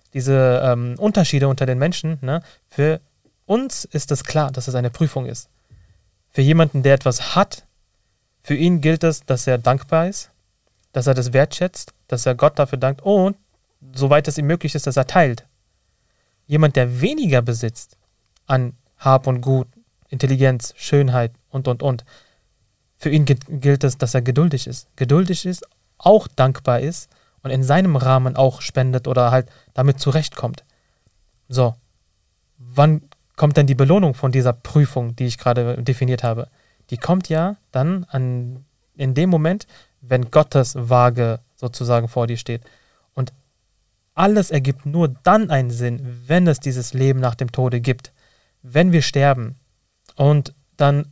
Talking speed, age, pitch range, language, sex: 155 wpm, 30-49, 120-145 Hz, German, male